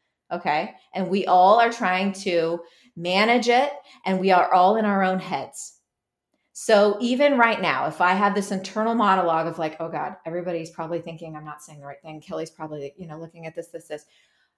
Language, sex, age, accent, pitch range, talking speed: English, female, 30-49, American, 170-225 Hz, 200 wpm